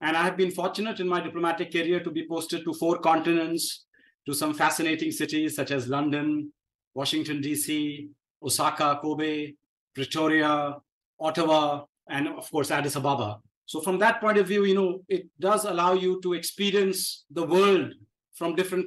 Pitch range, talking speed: 150-185 Hz, 160 wpm